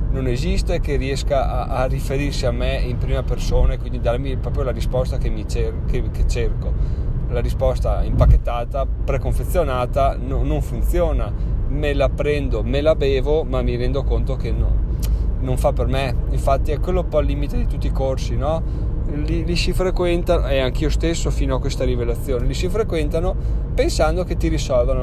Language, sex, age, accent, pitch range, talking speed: Italian, male, 30-49, native, 120-135 Hz, 185 wpm